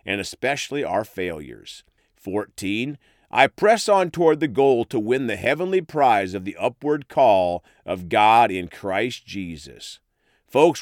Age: 40-59